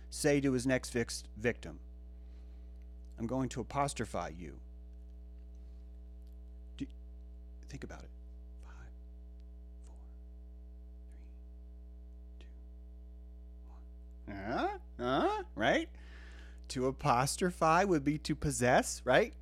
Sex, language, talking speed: male, English, 95 wpm